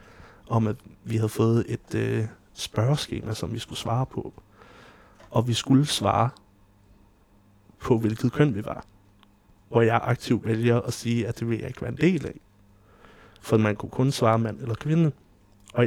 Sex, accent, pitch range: male, native, 105-130 Hz